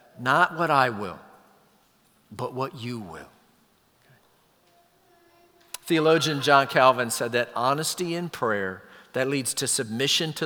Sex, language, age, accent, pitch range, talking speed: male, English, 50-69, American, 130-190 Hz, 120 wpm